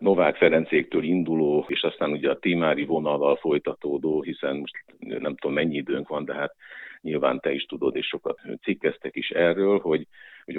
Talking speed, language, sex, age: 170 wpm, Hungarian, male, 50-69